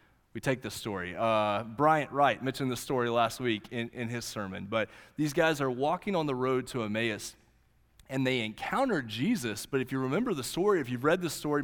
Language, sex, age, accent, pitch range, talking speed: English, male, 30-49, American, 110-155 Hz, 210 wpm